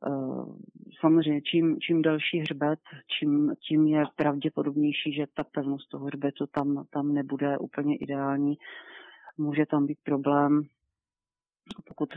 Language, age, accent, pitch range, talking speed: Czech, 40-59, native, 140-150 Hz, 120 wpm